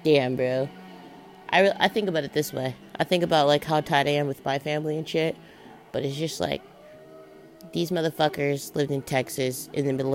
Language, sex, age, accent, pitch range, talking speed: English, female, 30-49, American, 130-160 Hz, 205 wpm